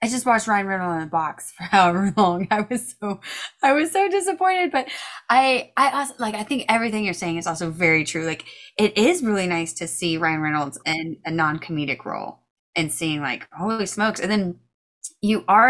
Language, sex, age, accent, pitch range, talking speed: English, female, 20-39, American, 160-215 Hz, 210 wpm